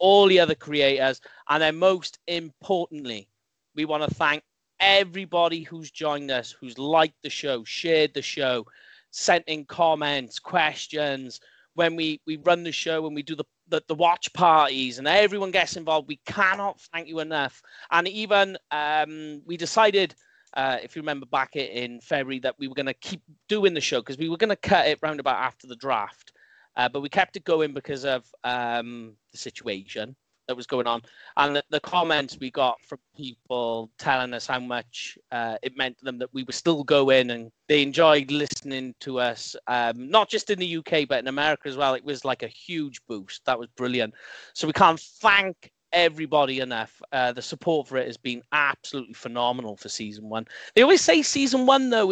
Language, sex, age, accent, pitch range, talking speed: English, male, 30-49, British, 130-170 Hz, 195 wpm